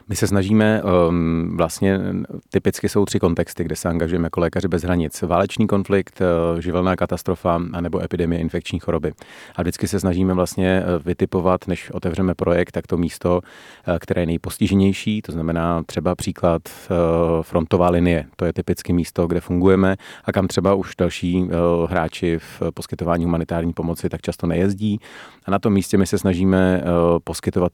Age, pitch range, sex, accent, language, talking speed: 30-49, 85-95 Hz, male, native, Czech, 155 wpm